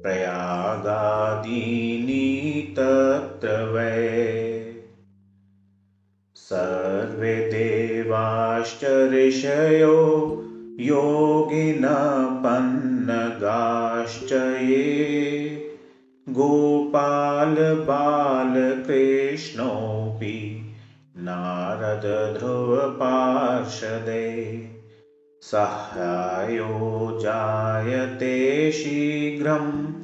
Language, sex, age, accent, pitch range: Hindi, male, 30-49, native, 110-140 Hz